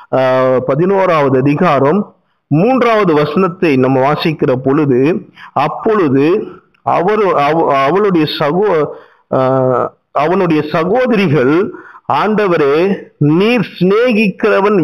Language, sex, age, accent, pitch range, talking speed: Tamil, male, 50-69, native, 145-205 Hz, 70 wpm